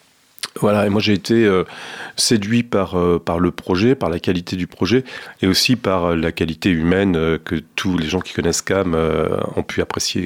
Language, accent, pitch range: French, French, 90-115 Hz